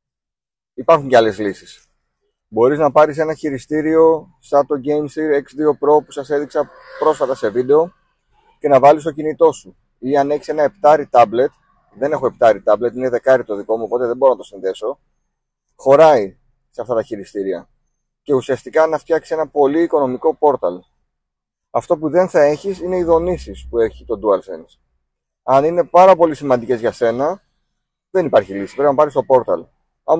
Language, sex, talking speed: Greek, male, 175 wpm